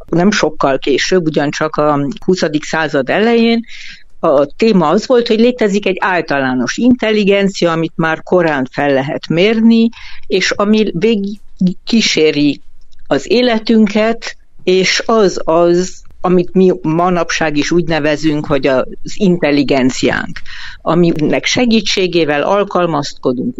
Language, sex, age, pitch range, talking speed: Hungarian, female, 60-79, 150-215 Hz, 110 wpm